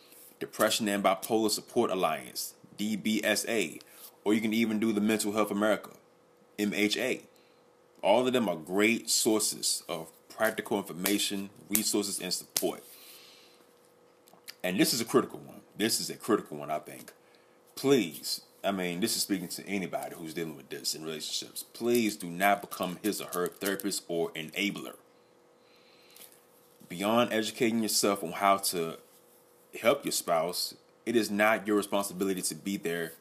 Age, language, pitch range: 30-49, English, 90-110 Hz